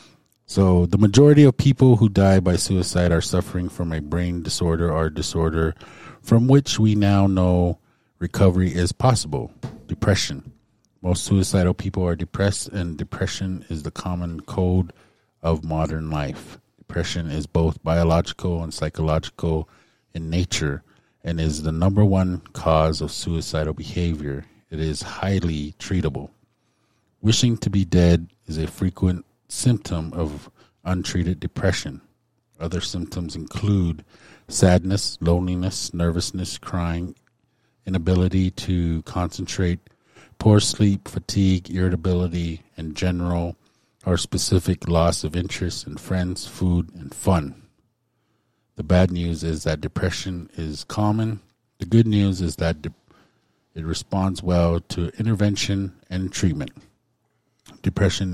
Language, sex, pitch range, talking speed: English, male, 85-100 Hz, 120 wpm